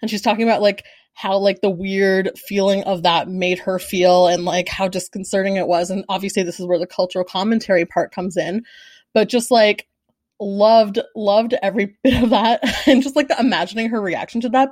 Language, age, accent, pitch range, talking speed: English, 20-39, American, 185-230 Hz, 200 wpm